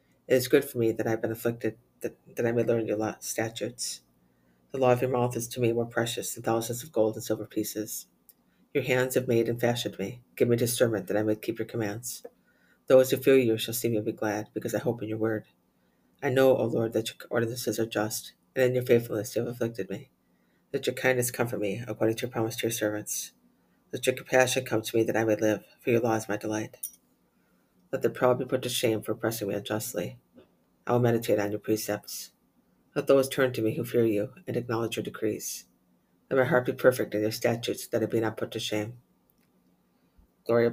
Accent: American